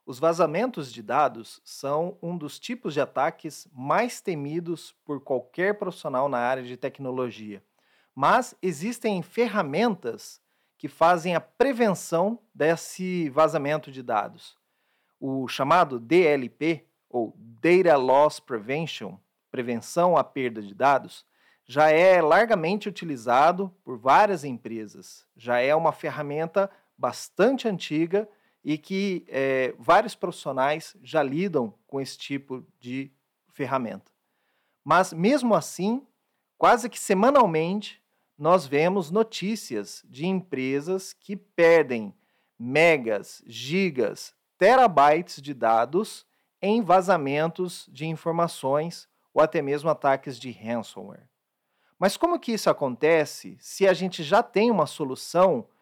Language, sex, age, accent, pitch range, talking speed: Portuguese, male, 40-59, Brazilian, 140-195 Hz, 115 wpm